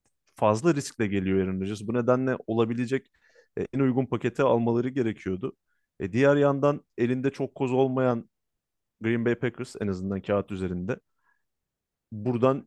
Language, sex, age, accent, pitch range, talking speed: Turkish, male, 30-49, native, 100-125 Hz, 130 wpm